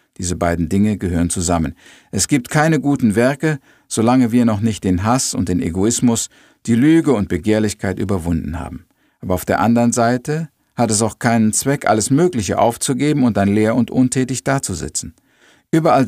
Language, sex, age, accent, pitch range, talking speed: German, male, 50-69, German, 100-130 Hz, 170 wpm